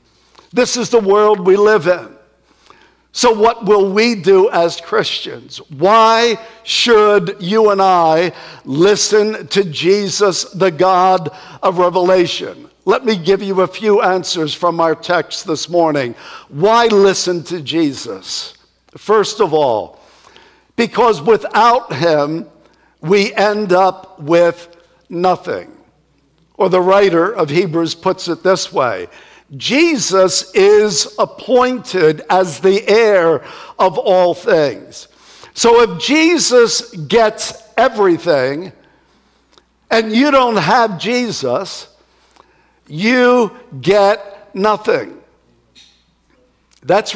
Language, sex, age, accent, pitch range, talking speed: English, male, 60-79, American, 180-230 Hz, 110 wpm